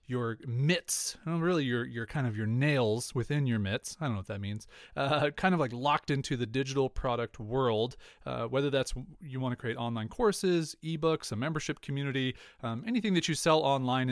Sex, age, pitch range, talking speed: male, 30-49, 120-165 Hz, 200 wpm